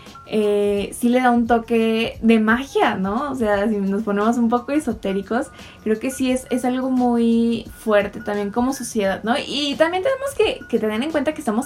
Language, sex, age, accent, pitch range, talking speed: Spanish, female, 10-29, Mexican, 205-250 Hz, 200 wpm